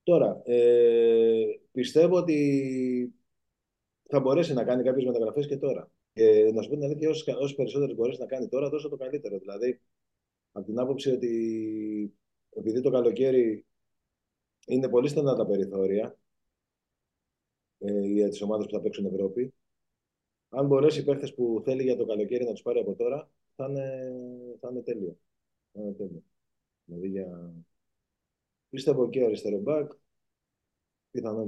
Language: Greek